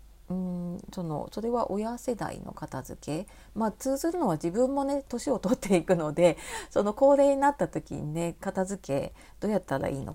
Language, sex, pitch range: Japanese, female, 170-250 Hz